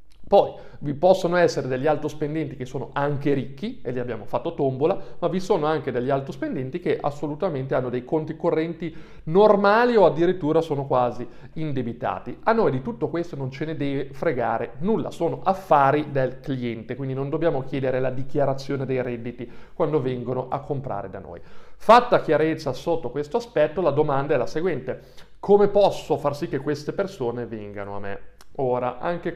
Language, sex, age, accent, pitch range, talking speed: Italian, male, 40-59, native, 125-160 Hz, 170 wpm